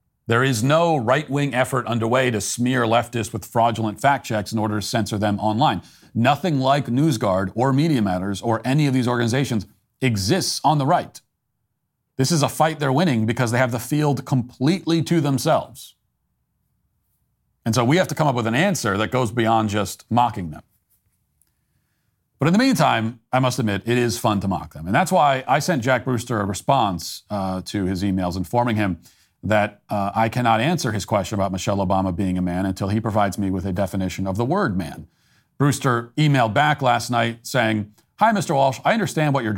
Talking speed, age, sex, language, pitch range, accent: 195 wpm, 40-59, male, English, 105-135 Hz, American